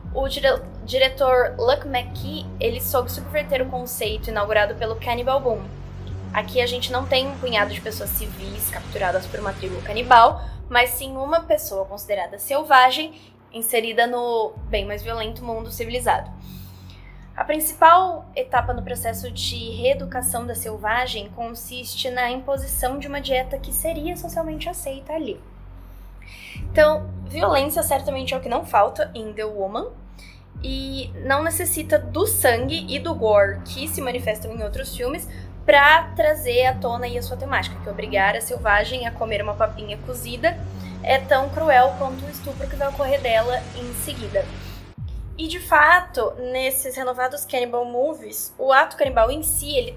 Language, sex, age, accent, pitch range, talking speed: Portuguese, female, 10-29, Brazilian, 205-285 Hz, 155 wpm